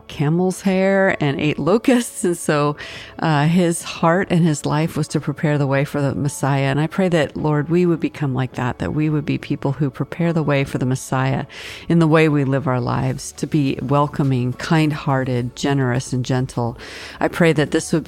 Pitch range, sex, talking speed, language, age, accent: 135-155 Hz, female, 205 wpm, English, 40-59, American